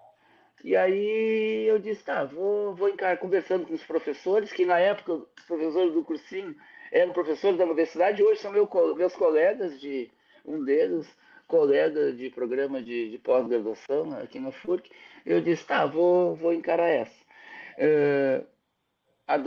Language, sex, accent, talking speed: Portuguese, male, Brazilian, 150 wpm